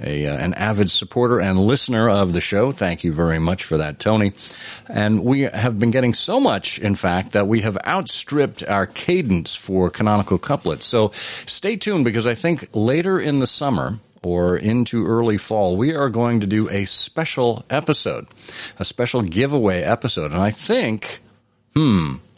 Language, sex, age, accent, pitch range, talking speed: English, male, 50-69, American, 95-125 Hz, 175 wpm